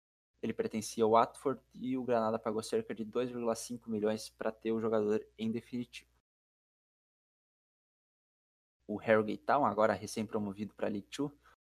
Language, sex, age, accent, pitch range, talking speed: Portuguese, male, 20-39, Brazilian, 105-115 Hz, 130 wpm